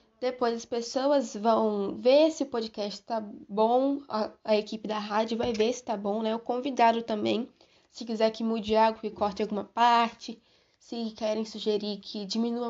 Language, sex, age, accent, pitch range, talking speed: Portuguese, female, 10-29, Brazilian, 220-275 Hz, 180 wpm